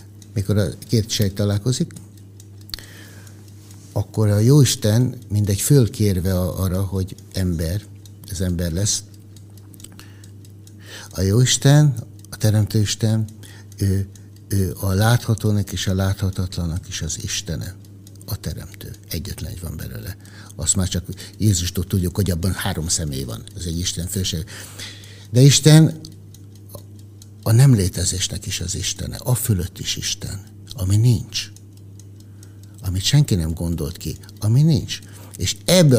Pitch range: 100-110 Hz